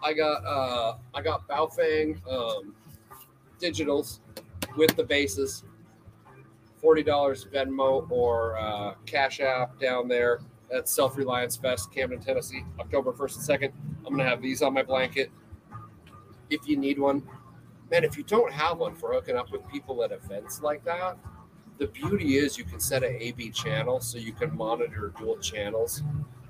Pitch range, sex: 115-160 Hz, male